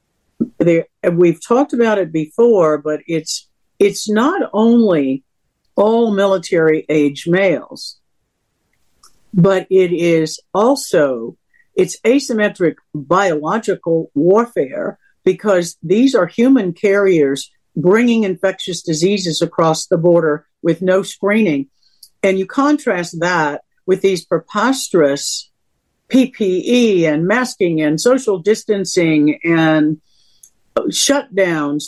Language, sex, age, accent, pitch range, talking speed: English, female, 60-79, American, 160-215 Hz, 95 wpm